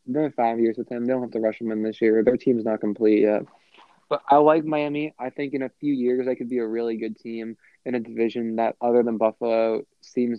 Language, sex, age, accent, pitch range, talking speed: English, male, 20-39, American, 115-135 Hz, 255 wpm